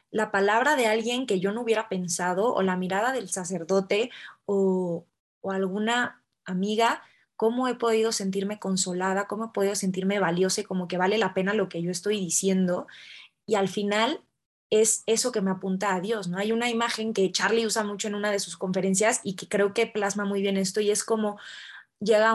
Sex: female